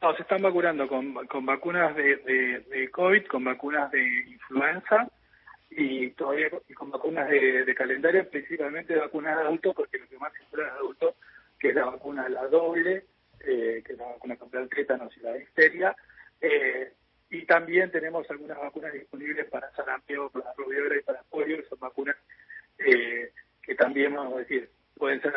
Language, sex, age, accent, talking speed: Spanish, male, 40-59, Argentinian, 185 wpm